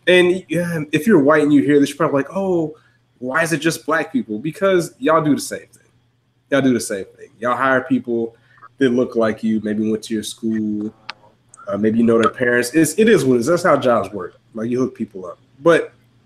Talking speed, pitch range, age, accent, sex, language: 230 wpm, 115-145 Hz, 20-39, American, male, English